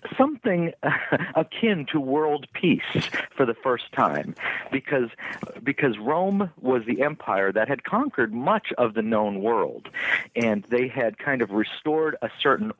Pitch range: 125-195 Hz